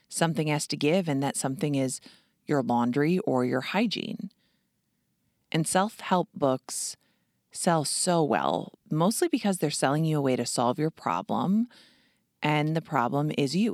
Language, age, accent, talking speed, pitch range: English, 30-49, American, 155 wpm, 135-185 Hz